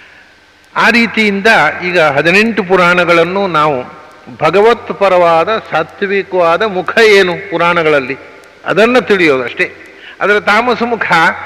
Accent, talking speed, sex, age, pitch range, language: Indian, 115 wpm, male, 60-79, 165-205 Hz, English